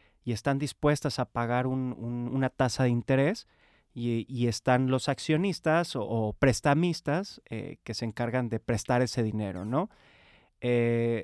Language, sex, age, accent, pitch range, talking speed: Spanish, male, 30-49, Mexican, 115-140 Hz, 145 wpm